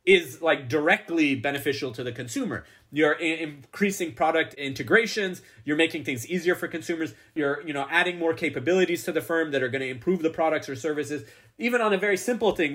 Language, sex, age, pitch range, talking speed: English, male, 30-49, 135-170 Hz, 195 wpm